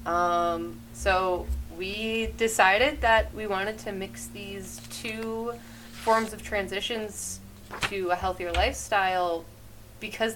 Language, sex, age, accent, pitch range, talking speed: English, female, 20-39, American, 165-215 Hz, 110 wpm